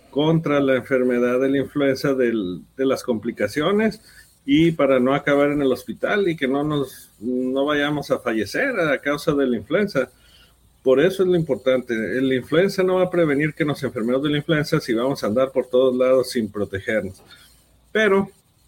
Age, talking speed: 50-69, 185 wpm